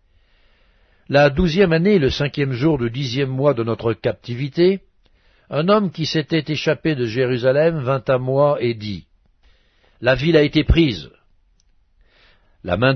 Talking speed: 145 wpm